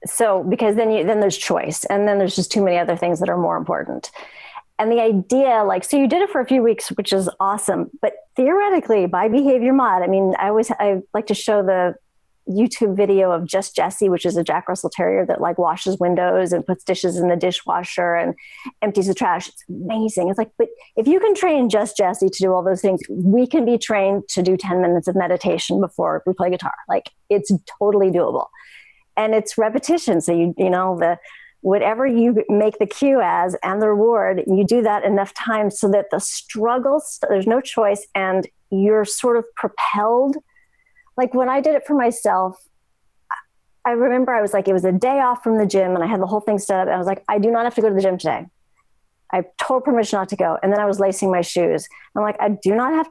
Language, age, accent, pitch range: English, 40-59, American, 190-245 Hz